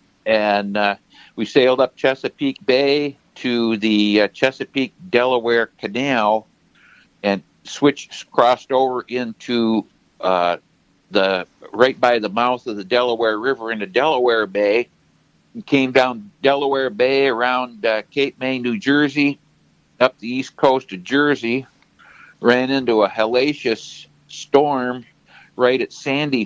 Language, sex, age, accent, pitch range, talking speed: English, male, 60-79, American, 105-130 Hz, 125 wpm